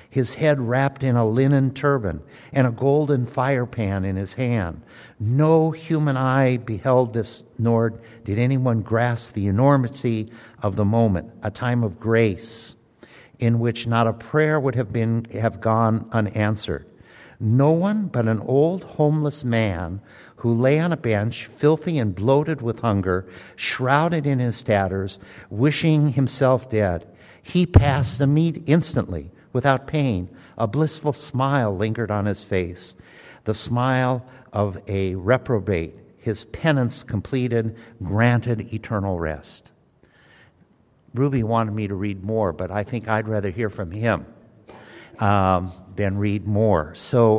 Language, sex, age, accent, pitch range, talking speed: English, male, 60-79, American, 105-130 Hz, 140 wpm